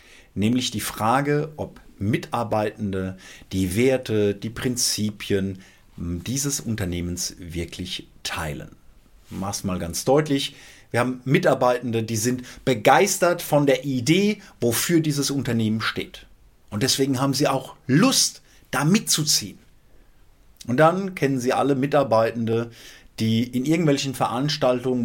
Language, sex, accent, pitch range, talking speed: German, male, German, 105-140 Hz, 115 wpm